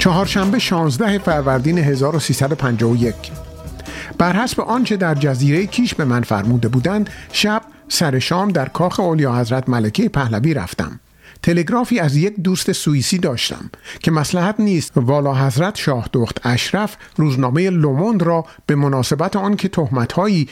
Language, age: Persian, 50-69